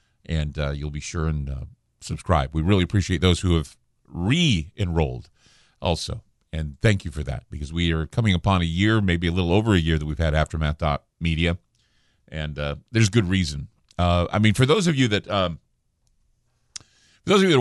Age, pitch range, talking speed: 50-69, 80-115 Hz, 200 wpm